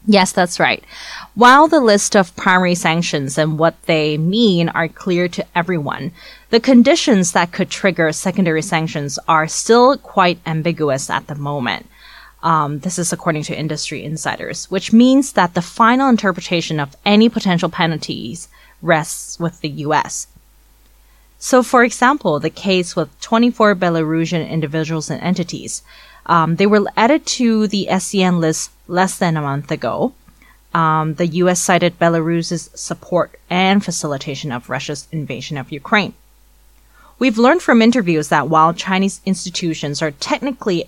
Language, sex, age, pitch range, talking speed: English, female, 20-39, 155-195 Hz, 145 wpm